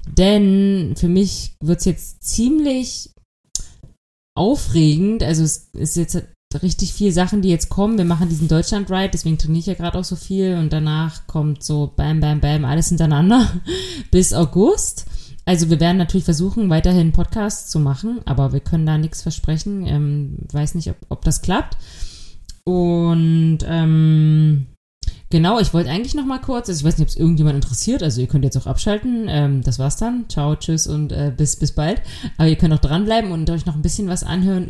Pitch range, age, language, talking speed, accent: 150-185 Hz, 20-39, German, 190 wpm, German